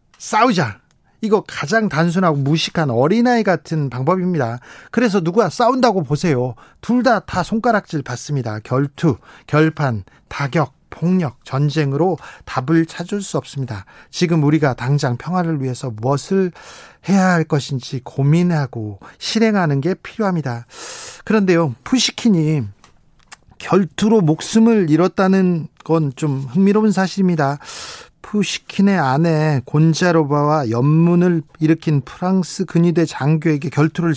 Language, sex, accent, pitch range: Korean, male, native, 145-195 Hz